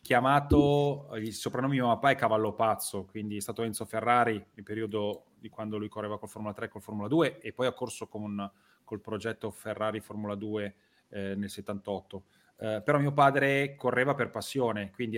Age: 30-49